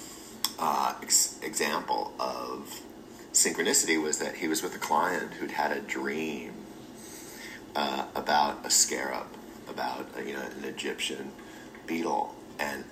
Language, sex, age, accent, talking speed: English, male, 30-49, American, 115 wpm